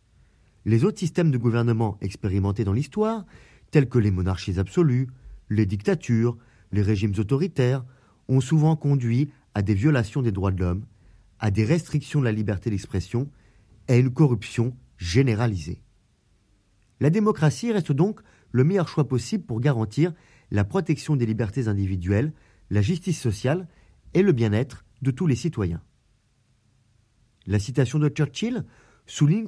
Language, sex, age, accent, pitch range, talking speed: French, male, 40-59, French, 105-140 Hz, 145 wpm